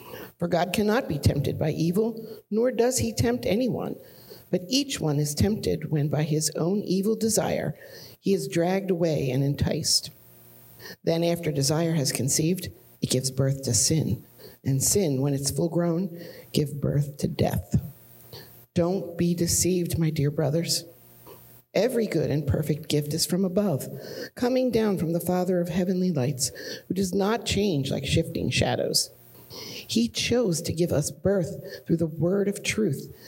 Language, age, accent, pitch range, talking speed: English, 50-69, American, 140-185 Hz, 160 wpm